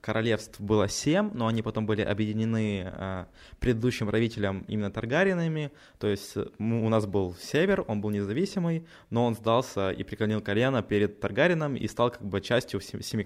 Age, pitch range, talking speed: 20-39, 105-120 Hz, 170 wpm